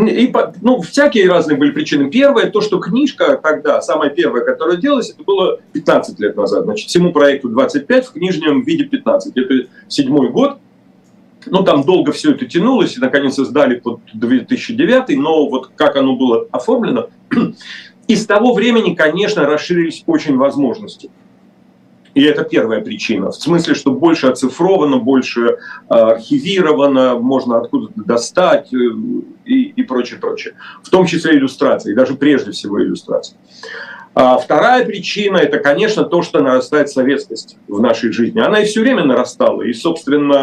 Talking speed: 155 wpm